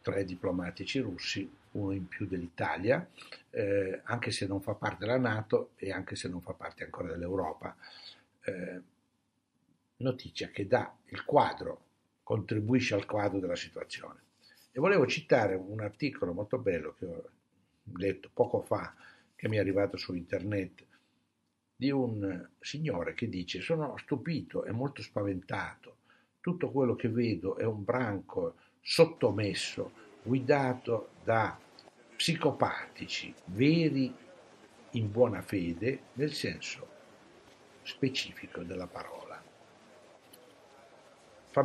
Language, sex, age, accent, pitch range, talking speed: Italian, male, 60-79, native, 95-130 Hz, 115 wpm